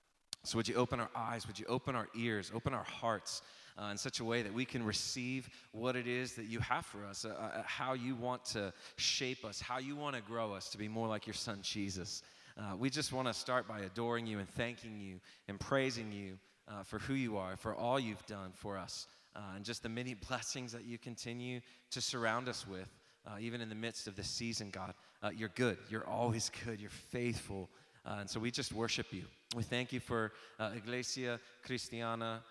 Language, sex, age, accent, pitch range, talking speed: English, male, 30-49, American, 105-125 Hz, 225 wpm